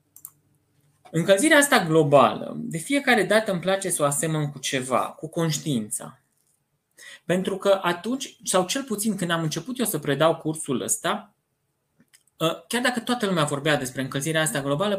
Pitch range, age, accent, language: 145-210 Hz, 20-39, native, Romanian